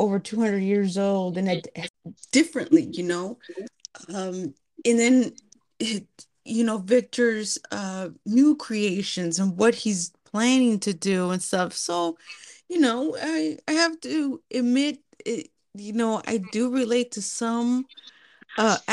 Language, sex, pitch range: English, female, 195-245 Hz